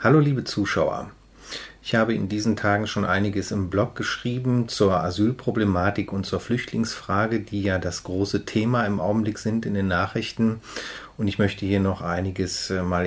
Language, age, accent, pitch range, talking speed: German, 30-49, German, 95-105 Hz, 165 wpm